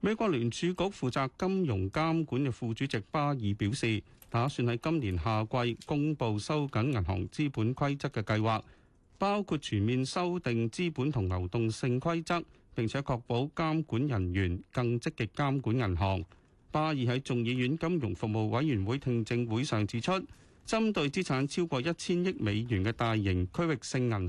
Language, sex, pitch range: Chinese, male, 110-155 Hz